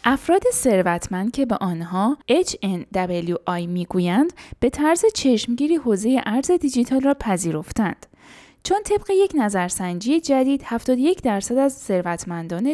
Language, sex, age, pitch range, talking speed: Persian, female, 10-29, 185-285 Hz, 115 wpm